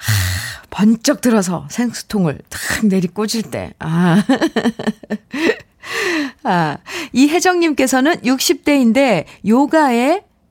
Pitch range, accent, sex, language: 170-255 Hz, native, female, Korean